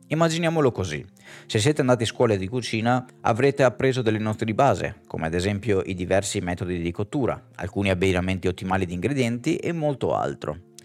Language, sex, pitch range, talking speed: Italian, male, 95-125 Hz, 170 wpm